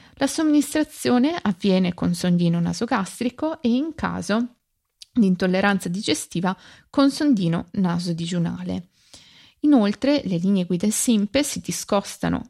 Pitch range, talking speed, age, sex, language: 180-235 Hz, 105 wpm, 20-39, female, Italian